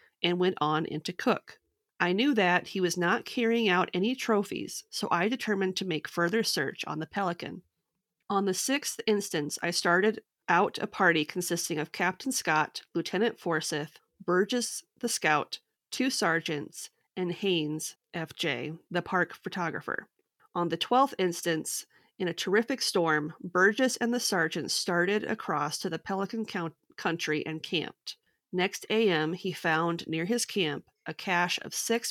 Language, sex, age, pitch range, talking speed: English, female, 30-49, 165-210 Hz, 155 wpm